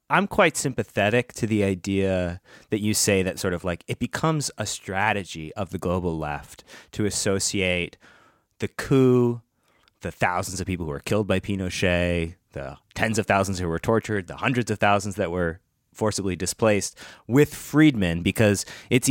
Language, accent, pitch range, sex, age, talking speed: English, American, 90-120 Hz, male, 30-49, 165 wpm